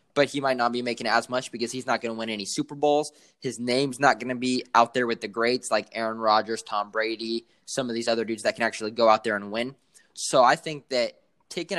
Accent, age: American, 20-39